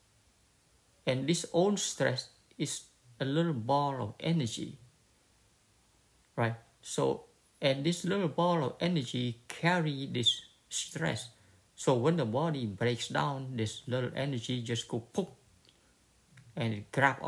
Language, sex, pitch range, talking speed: English, male, 110-140 Hz, 125 wpm